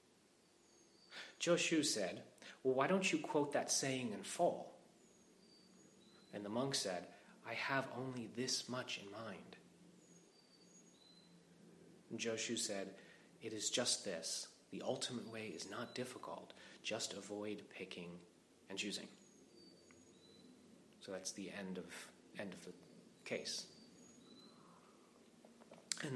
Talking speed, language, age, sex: 115 wpm, English, 30-49, male